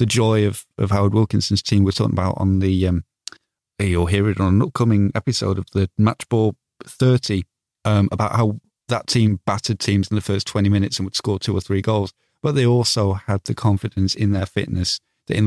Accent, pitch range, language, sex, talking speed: British, 95-110 Hz, English, male, 210 wpm